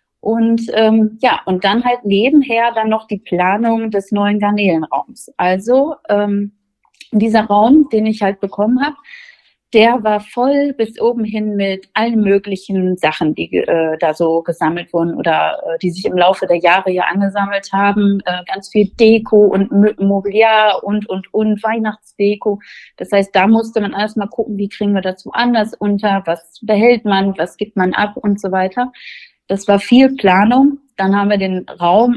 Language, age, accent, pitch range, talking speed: German, 30-49, German, 185-225 Hz, 175 wpm